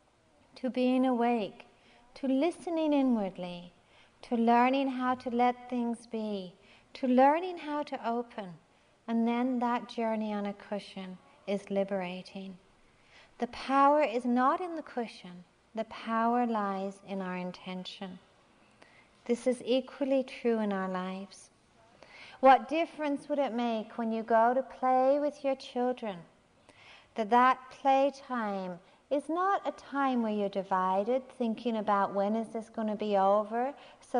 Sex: female